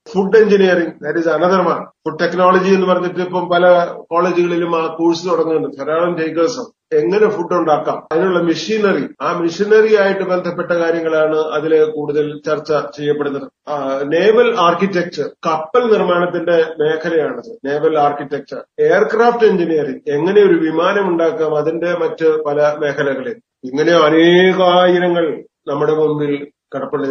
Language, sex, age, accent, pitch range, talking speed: Malayalam, male, 30-49, native, 155-190 Hz, 115 wpm